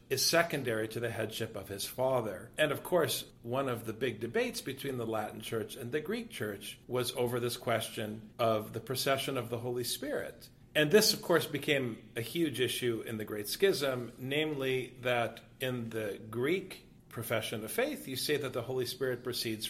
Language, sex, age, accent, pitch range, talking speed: English, male, 40-59, American, 115-150 Hz, 190 wpm